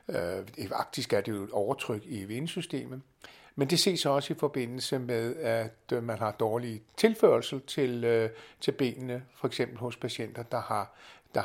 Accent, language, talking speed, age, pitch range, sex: native, Danish, 150 wpm, 60-79, 115-140 Hz, male